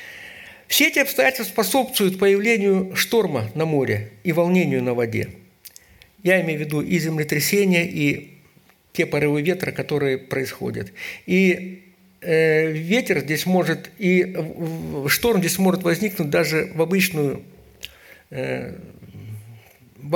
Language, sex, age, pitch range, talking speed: Russian, male, 60-79, 145-195 Hz, 105 wpm